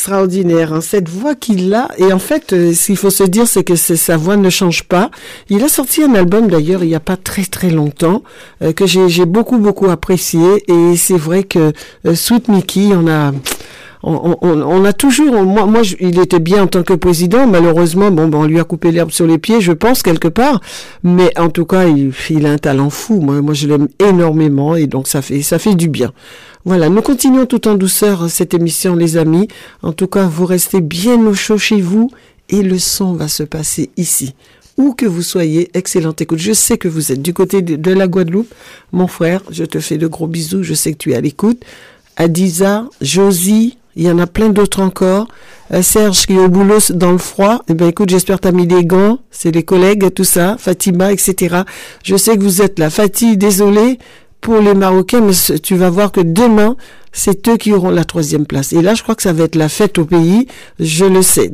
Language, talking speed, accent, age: French, 230 wpm, French, 60-79